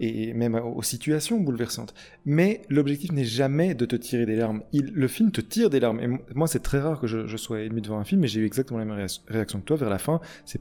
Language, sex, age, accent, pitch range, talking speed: French, male, 20-39, French, 110-155 Hz, 270 wpm